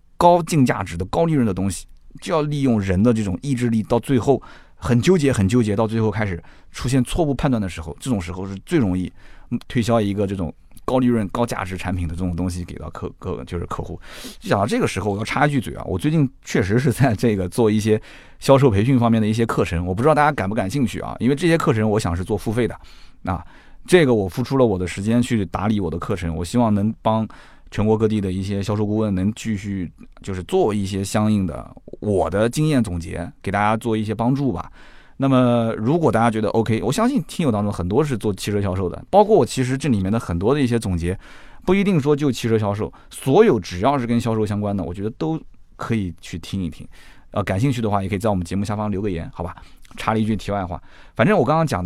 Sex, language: male, Chinese